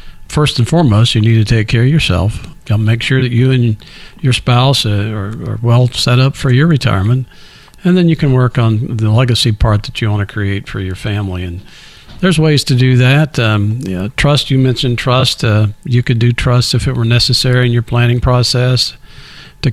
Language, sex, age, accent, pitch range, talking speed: English, male, 50-69, American, 110-130 Hz, 205 wpm